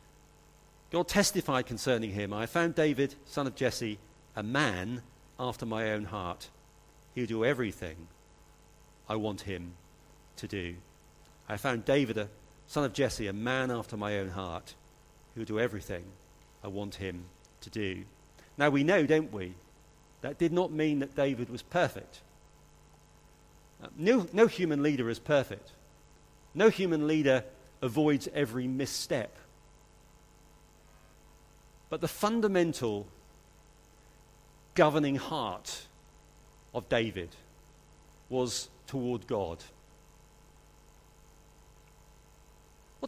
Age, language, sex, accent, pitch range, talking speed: 50-69, English, male, British, 90-140 Hz, 115 wpm